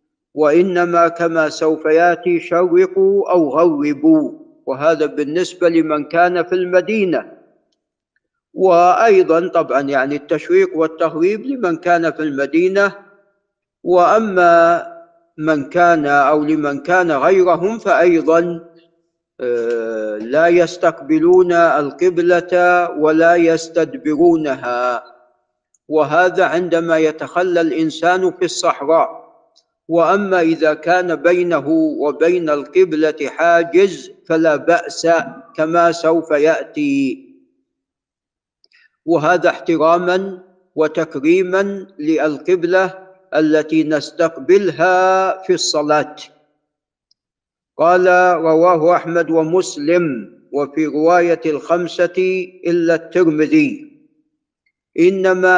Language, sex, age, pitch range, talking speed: Arabic, male, 50-69, 160-195 Hz, 75 wpm